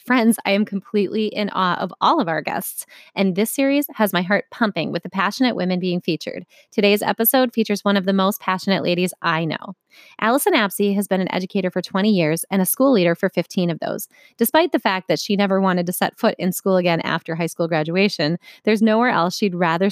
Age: 20-39